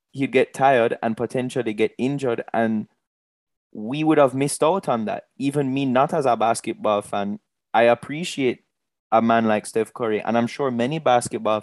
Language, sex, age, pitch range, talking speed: English, male, 20-39, 115-140 Hz, 175 wpm